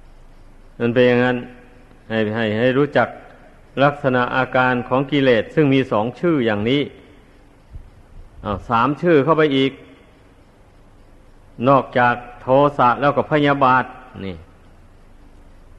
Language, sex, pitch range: Thai, male, 100-140 Hz